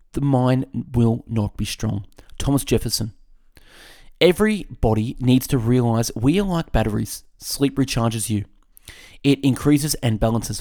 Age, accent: 30-49, Australian